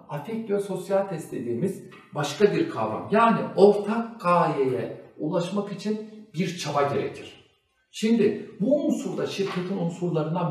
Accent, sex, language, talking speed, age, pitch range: native, male, Turkish, 115 wpm, 60-79, 150-205 Hz